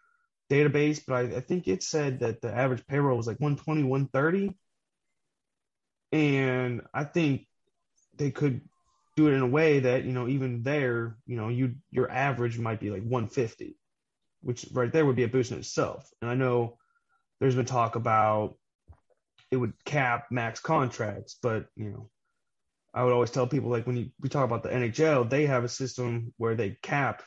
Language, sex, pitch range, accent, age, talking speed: English, male, 115-135 Hz, American, 20-39, 180 wpm